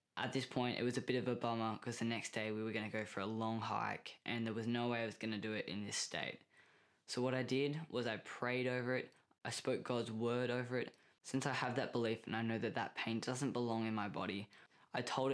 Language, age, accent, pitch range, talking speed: English, 10-29, Australian, 110-125 Hz, 265 wpm